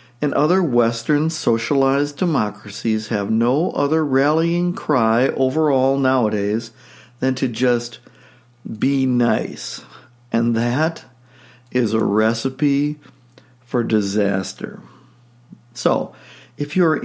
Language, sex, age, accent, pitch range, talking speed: English, male, 60-79, American, 120-145 Hz, 95 wpm